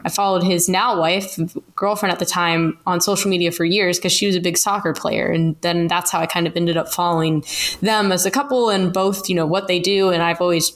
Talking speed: 250 wpm